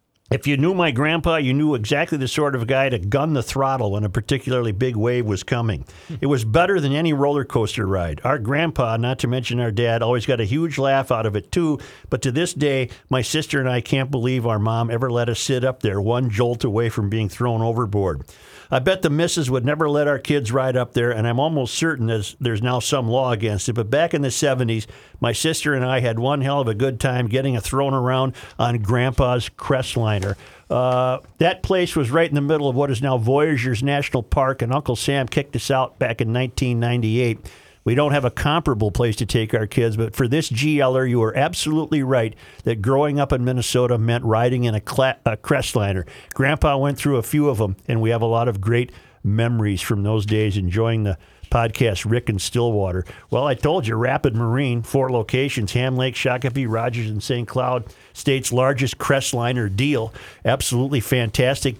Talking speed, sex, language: 210 wpm, male, English